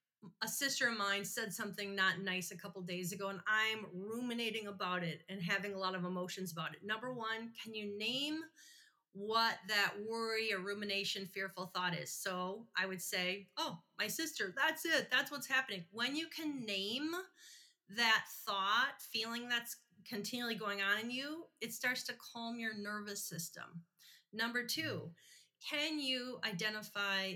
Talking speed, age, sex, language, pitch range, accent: 165 wpm, 30-49, female, English, 195-275 Hz, American